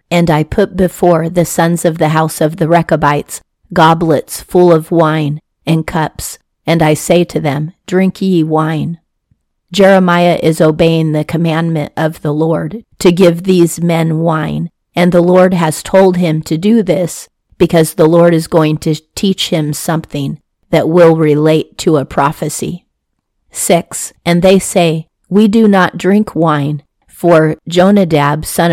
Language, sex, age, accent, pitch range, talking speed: English, female, 40-59, American, 155-175 Hz, 155 wpm